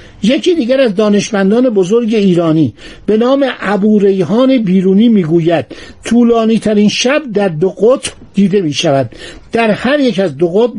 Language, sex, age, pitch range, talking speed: Persian, male, 60-79, 190-245 Hz, 135 wpm